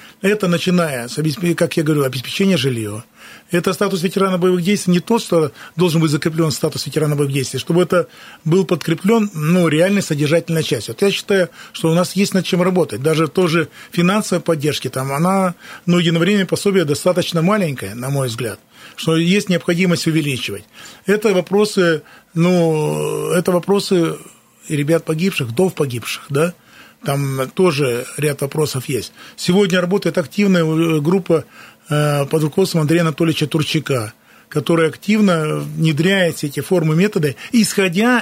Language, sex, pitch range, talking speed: Russian, male, 155-190 Hz, 145 wpm